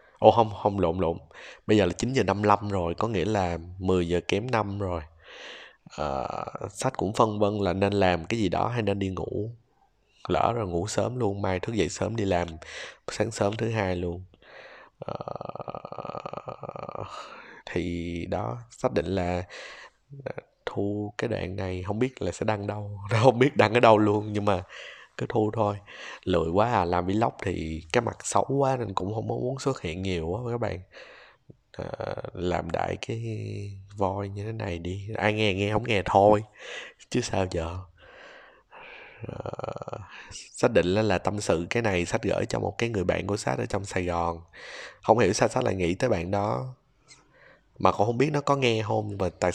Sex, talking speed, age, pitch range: male, 190 wpm, 20-39, 90-110 Hz